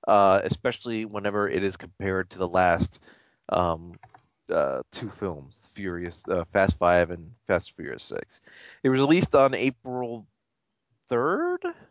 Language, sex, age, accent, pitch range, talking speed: English, male, 30-49, American, 95-135 Hz, 135 wpm